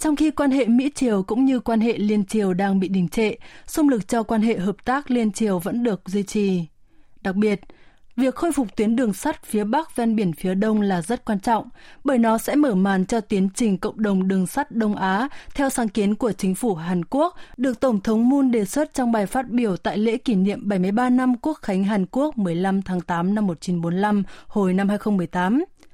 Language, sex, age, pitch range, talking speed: Vietnamese, female, 20-39, 195-260 Hz, 220 wpm